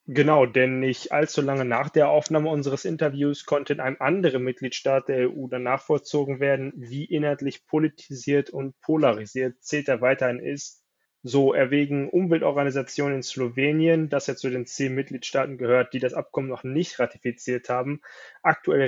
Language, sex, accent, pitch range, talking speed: German, male, German, 130-150 Hz, 155 wpm